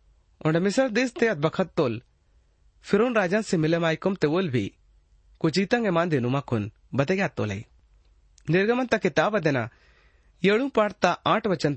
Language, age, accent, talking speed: Hindi, 30-49, native, 70 wpm